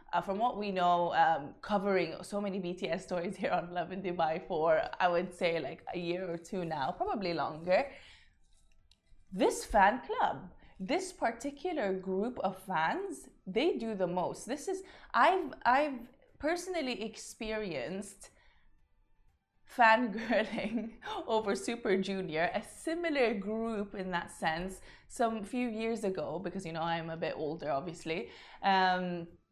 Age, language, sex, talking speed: 20-39, Arabic, female, 140 wpm